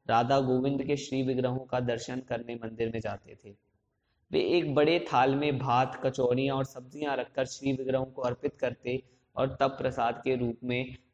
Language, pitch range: Hindi, 115-140 Hz